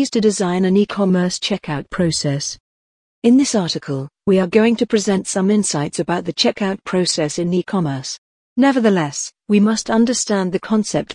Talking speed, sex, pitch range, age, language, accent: 150 wpm, female, 165-210 Hz, 50-69, English, British